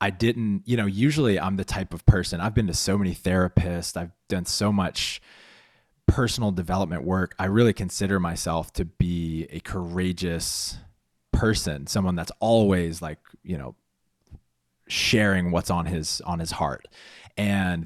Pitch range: 85-105 Hz